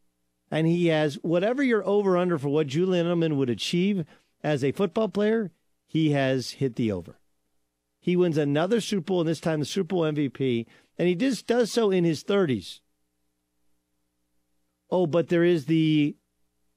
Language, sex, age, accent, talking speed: English, male, 50-69, American, 165 wpm